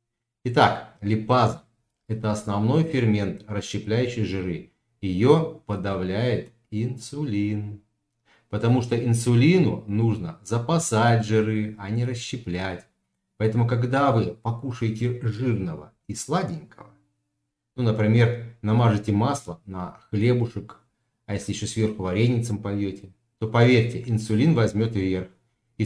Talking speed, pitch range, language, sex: 100 wpm, 100-120 Hz, Russian, male